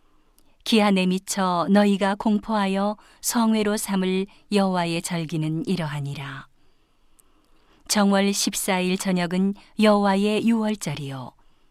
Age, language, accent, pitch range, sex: 40-59, Korean, native, 180-210 Hz, female